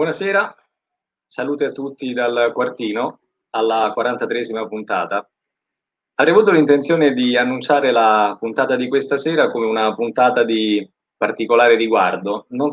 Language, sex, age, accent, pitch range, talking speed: Italian, male, 20-39, native, 115-165 Hz, 125 wpm